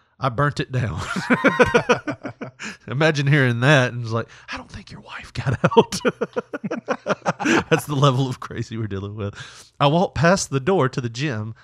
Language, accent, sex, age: English, American, male, 30-49